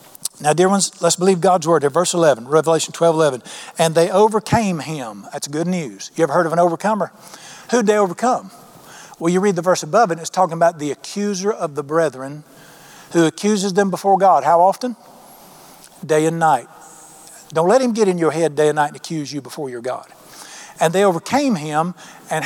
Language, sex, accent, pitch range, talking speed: English, male, American, 150-185 Hz, 200 wpm